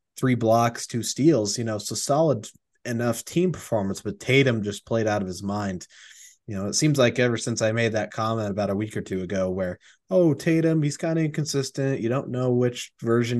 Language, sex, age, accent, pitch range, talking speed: English, male, 20-39, American, 105-125 Hz, 215 wpm